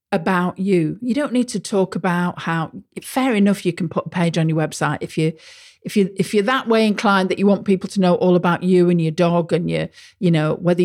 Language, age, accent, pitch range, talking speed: English, 50-69, British, 175-235 Hz, 250 wpm